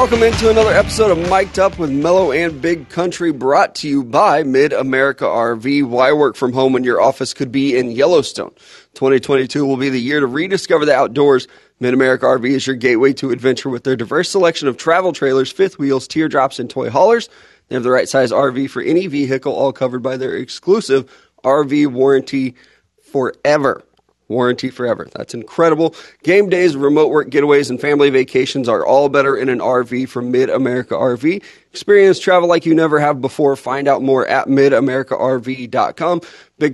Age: 30-49